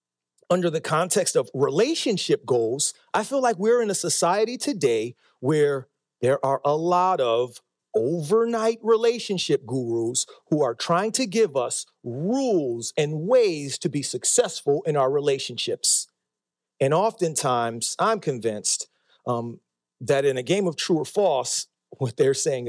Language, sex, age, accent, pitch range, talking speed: English, male, 40-59, American, 160-265 Hz, 145 wpm